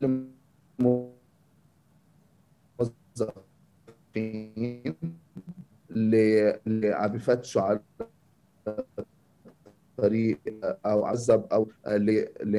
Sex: male